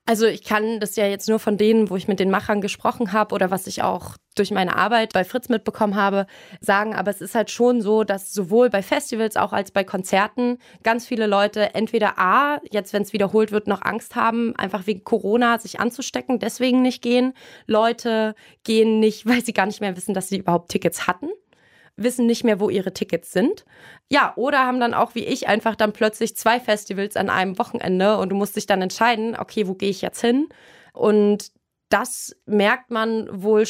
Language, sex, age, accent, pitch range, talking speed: German, female, 20-39, German, 195-230 Hz, 205 wpm